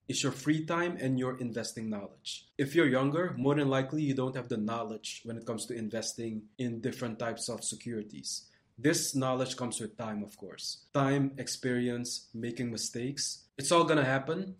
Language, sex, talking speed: English, male, 185 wpm